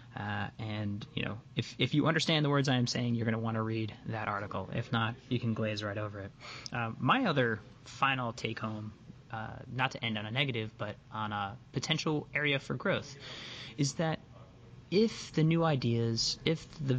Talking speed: 200 wpm